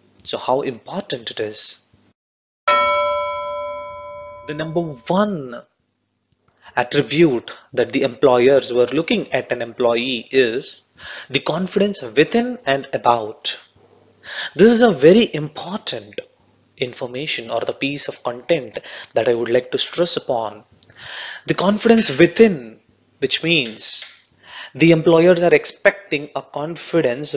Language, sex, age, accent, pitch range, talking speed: English, male, 30-49, Indian, 125-175 Hz, 115 wpm